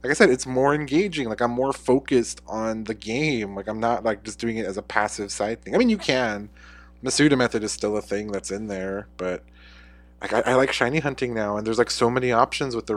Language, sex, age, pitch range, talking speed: English, male, 20-39, 105-130 Hz, 245 wpm